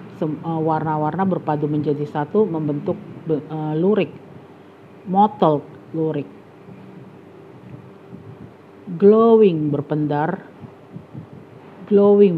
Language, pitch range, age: Indonesian, 145-190 Hz, 50-69